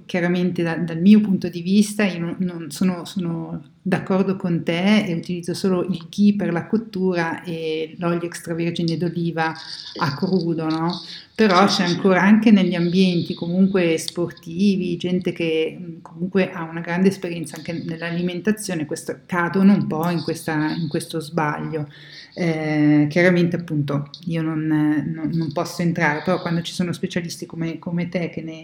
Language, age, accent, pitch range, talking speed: Italian, 50-69, native, 165-185 Hz, 150 wpm